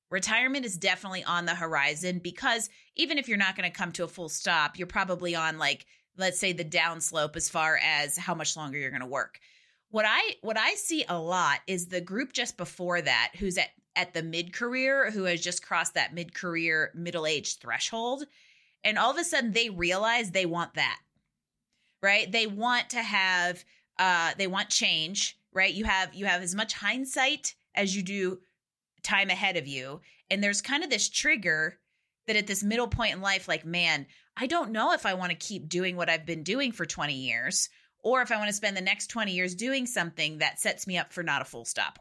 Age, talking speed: 30-49, 210 wpm